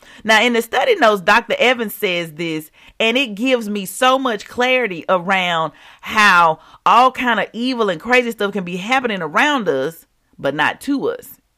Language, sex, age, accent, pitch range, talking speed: English, female, 40-59, American, 180-255 Hz, 175 wpm